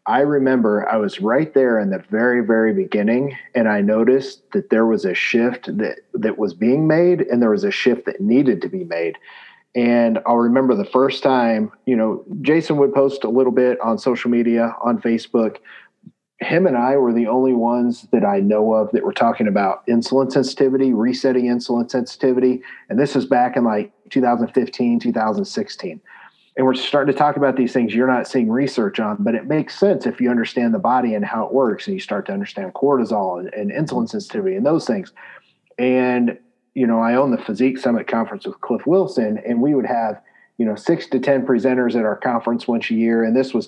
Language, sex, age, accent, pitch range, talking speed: English, male, 40-59, American, 115-140 Hz, 205 wpm